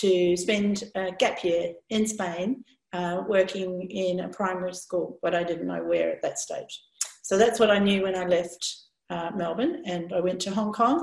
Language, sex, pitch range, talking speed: English, female, 185-220 Hz, 200 wpm